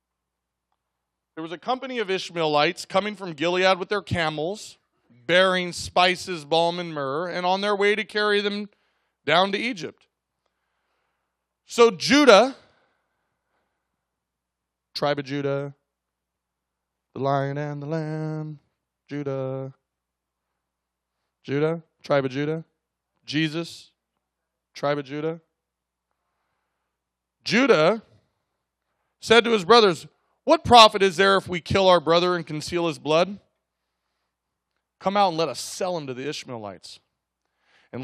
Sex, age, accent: male, 20-39, American